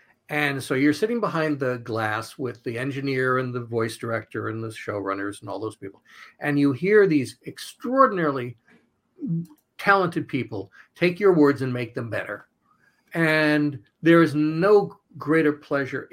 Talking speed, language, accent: 150 wpm, English, American